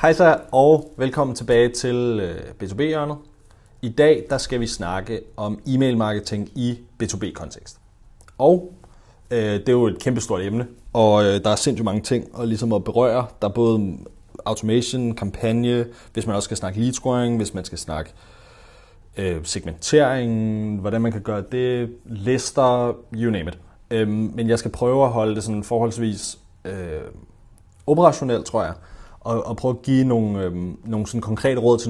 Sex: male